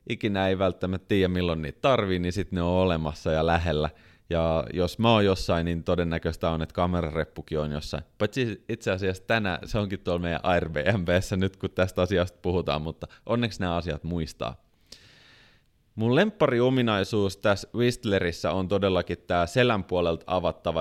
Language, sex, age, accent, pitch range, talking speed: Finnish, male, 30-49, native, 85-110 Hz, 160 wpm